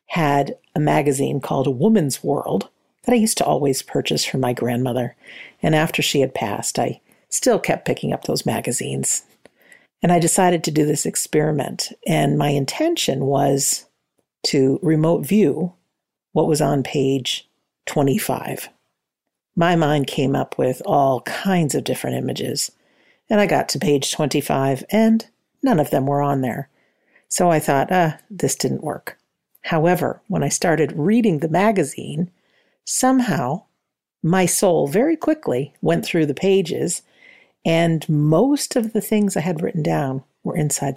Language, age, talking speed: English, 50-69, 150 wpm